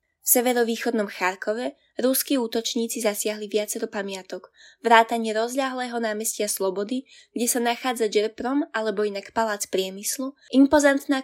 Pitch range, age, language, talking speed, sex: 210-245 Hz, 20-39, Slovak, 110 wpm, female